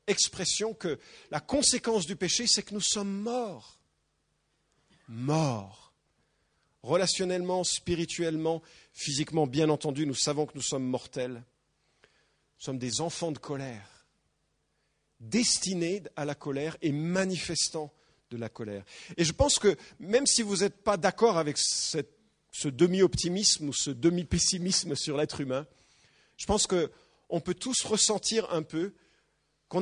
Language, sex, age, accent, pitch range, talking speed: English, male, 40-59, French, 150-205 Hz, 135 wpm